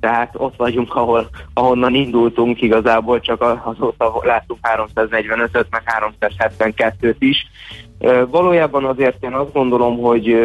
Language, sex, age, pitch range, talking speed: Hungarian, male, 20-39, 105-115 Hz, 115 wpm